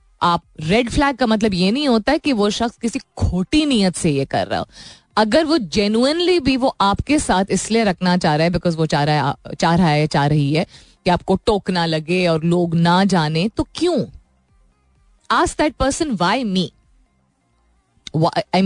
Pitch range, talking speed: 170-235 Hz, 195 wpm